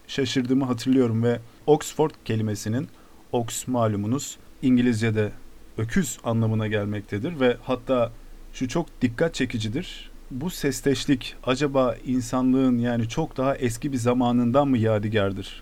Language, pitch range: Turkish, 110-140 Hz